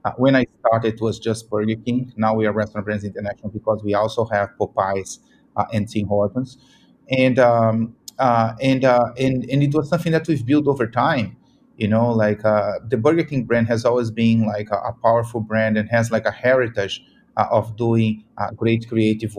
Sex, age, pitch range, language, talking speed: male, 30-49, 110-130 Hz, English, 190 wpm